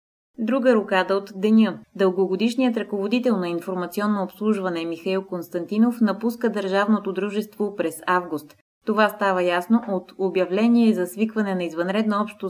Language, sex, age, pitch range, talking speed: Bulgarian, female, 30-49, 180-220 Hz, 125 wpm